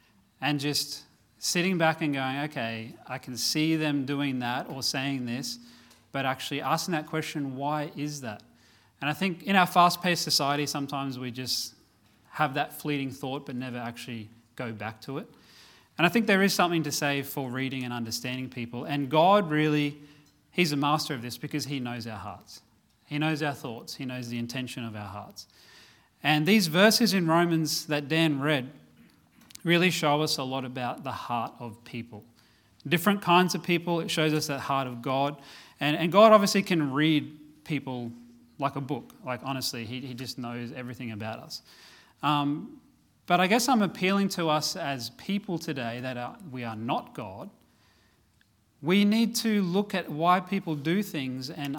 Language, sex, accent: English, male, Australian